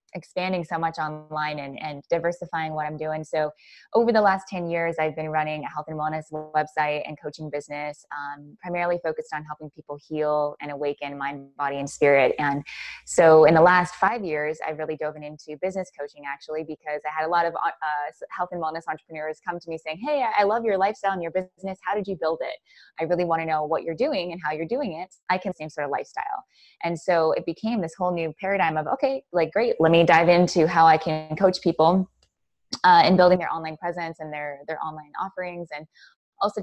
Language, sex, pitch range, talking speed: English, female, 150-180 Hz, 220 wpm